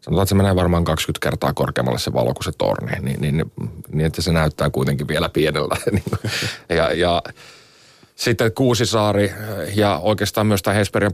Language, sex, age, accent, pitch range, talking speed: Finnish, male, 30-49, native, 80-95 Hz, 170 wpm